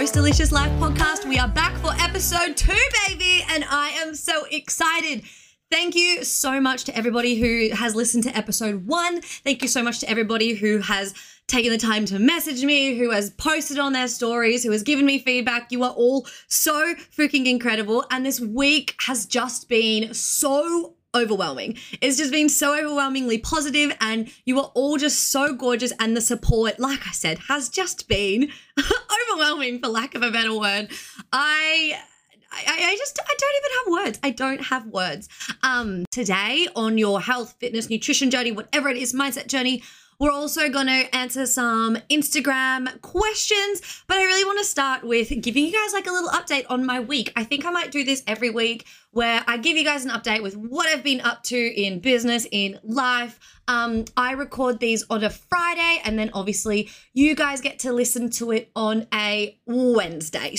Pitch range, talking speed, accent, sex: 225-290 Hz, 190 wpm, Australian, female